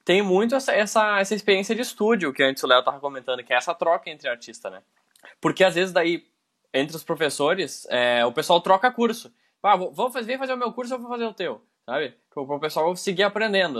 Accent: Brazilian